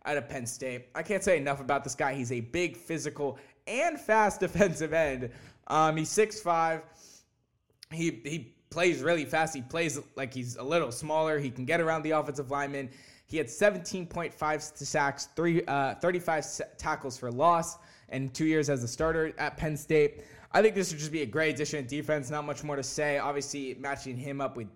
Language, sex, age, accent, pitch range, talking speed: English, male, 10-29, American, 135-165 Hz, 200 wpm